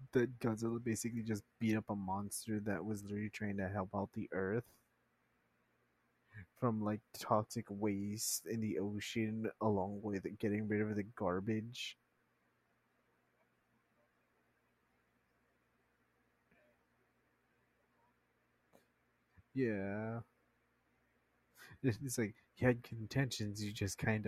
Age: 20-39